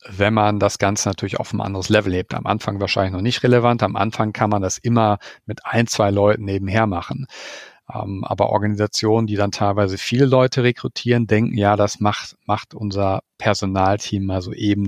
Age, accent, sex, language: 40-59, German, male, German